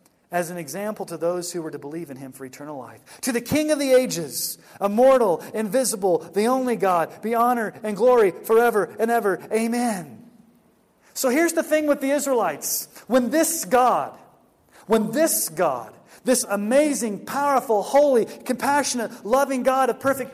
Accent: American